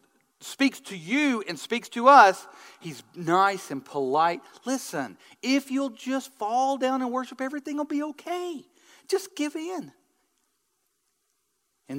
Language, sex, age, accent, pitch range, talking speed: English, male, 40-59, American, 175-275 Hz, 135 wpm